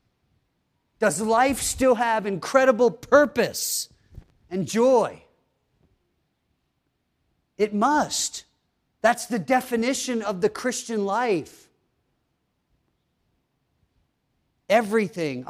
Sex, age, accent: male, 40-59, American